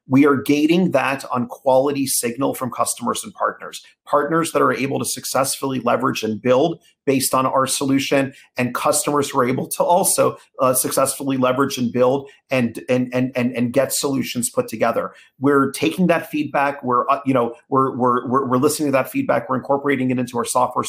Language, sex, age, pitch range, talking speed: English, male, 40-59, 125-145 Hz, 190 wpm